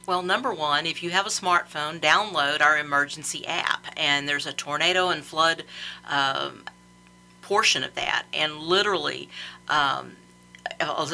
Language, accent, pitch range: English, American, 155-215 Hz